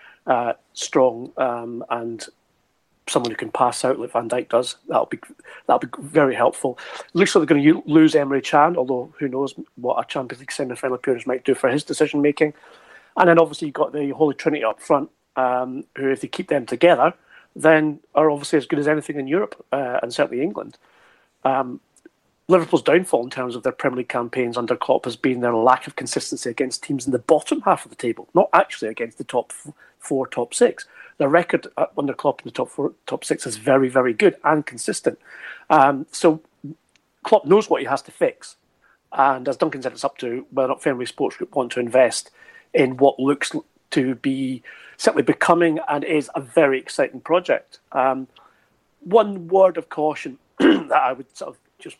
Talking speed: 200 wpm